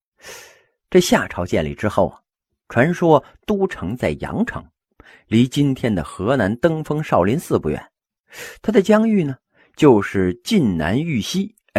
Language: Chinese